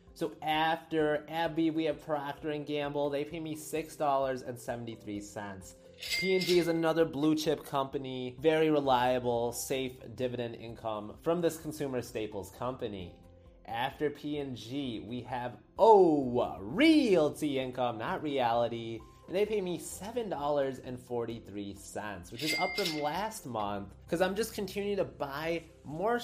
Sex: male